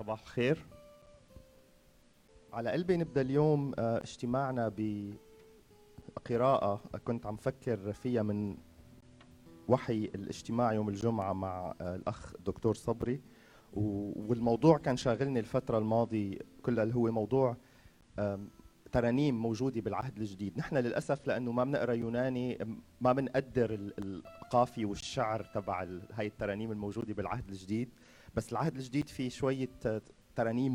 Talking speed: 105 wpm